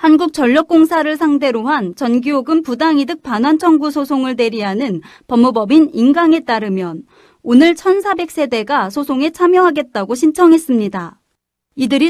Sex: female